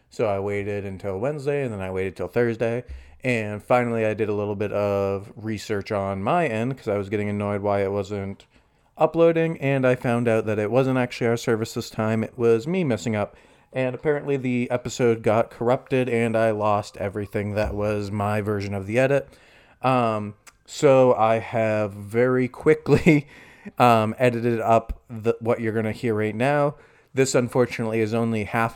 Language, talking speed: English, 180 wpm